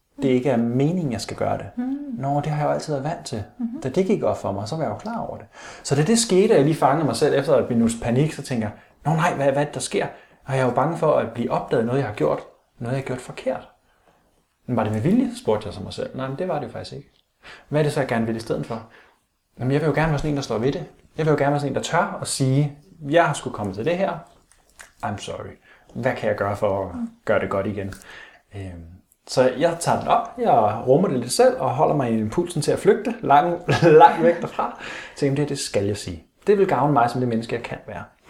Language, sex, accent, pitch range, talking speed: Danish, male, native, 115-160 Hz, 290 wpm